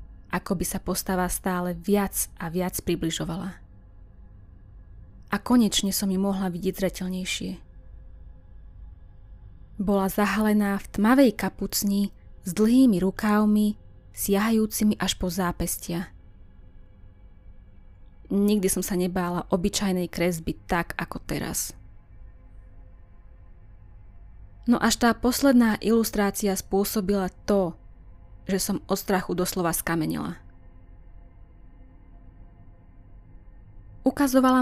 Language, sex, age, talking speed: Slovak, female, 20-39, 90 wpm